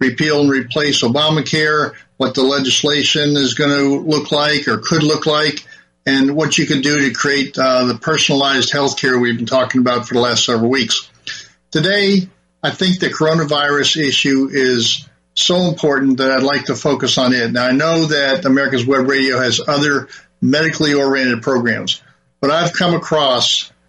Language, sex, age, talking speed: English, male, 50-69, 175 wpm